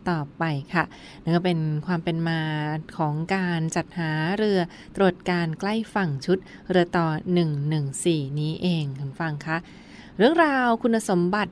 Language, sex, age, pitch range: Thai, female, 20-39, 165-195 Hz